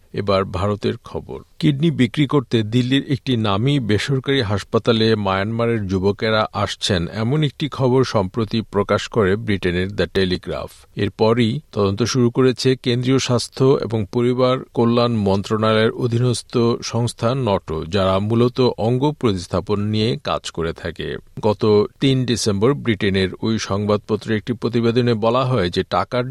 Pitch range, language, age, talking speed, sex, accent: 100-125 Hz, Bengali, 50-69, 130 wpm, male, native